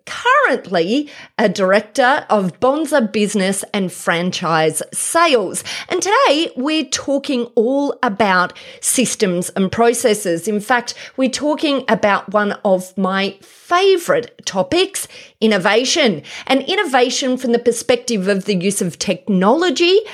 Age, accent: 30-49, Australian